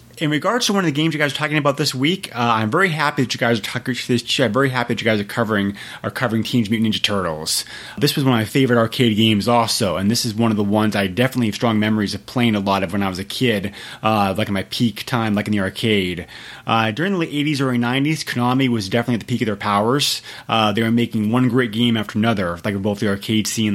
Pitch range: 105-125 Hz